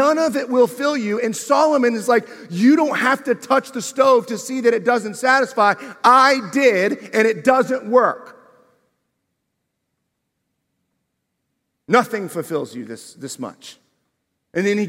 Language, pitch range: English, 230-275 Hz